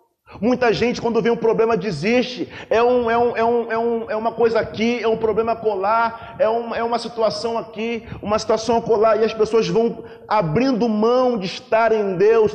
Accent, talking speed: Brazilian, 165 wpm